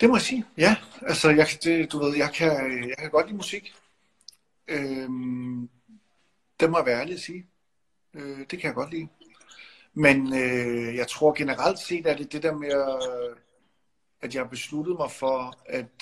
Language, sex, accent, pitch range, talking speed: English, male, Danish, 125-160 Hz, 180 wpm